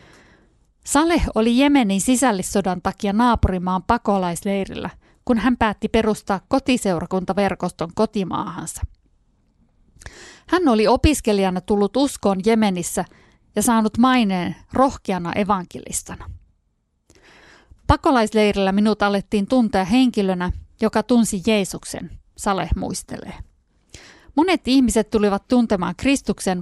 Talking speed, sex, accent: 90 wpm, female, native